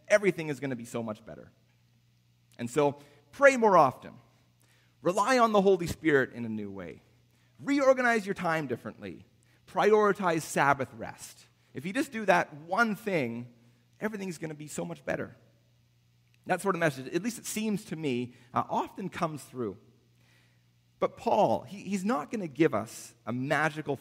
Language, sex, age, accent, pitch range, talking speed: English, male, 30-49, American, 110-170 Hz, 165 wpm